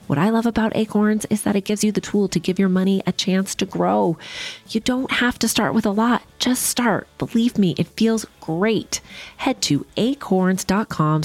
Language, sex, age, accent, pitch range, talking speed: English, female, 30-49, American, 135-185 Hz, 205 wpm